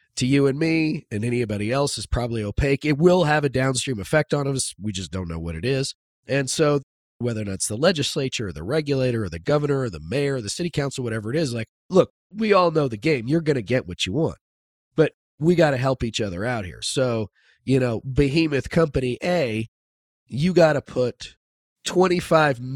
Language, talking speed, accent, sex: English, 220 wpm, American, male